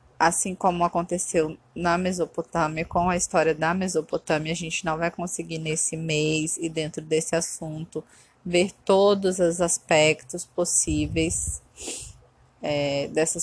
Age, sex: 20-39, female